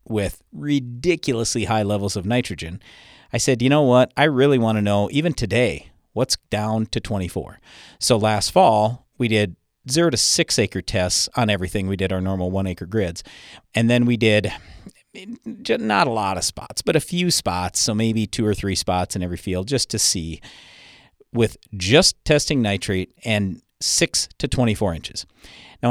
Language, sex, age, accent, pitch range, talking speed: English, male, 40-59, American, 100-125 Hz, 175 wpm